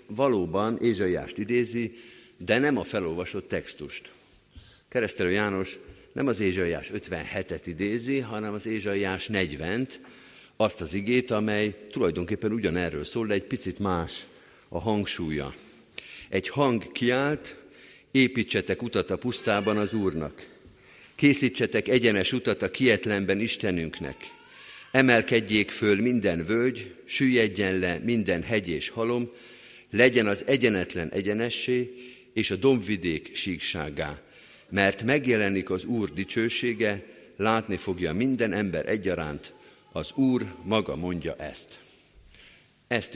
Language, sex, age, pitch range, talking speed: Hungarian, male, 50-69, 95-120 Hz, 115 wpm